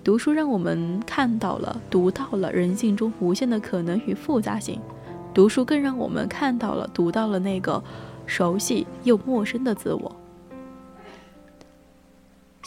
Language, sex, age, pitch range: Chinese, female, 20-39, 185-250 Hz